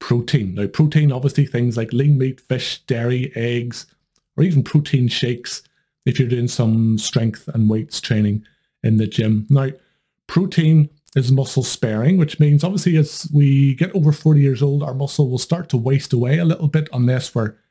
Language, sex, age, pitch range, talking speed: English, male, 30-49, 115-145 Hz, 180 wpm